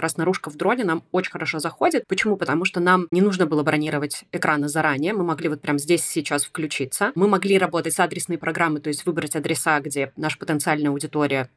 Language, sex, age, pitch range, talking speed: Russian, female, 20-39, 150-180 Hz, 200 wpm